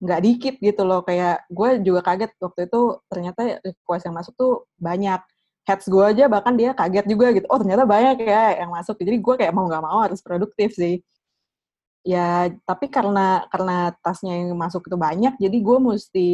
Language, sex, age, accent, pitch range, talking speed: Indonesian, female, 20-39, native, 175-215 Hz, 185 wpm